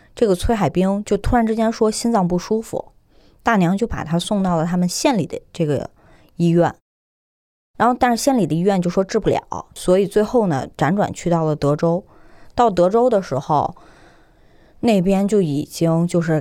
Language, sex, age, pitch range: Chinese, female, 20-39, 165-200 Hz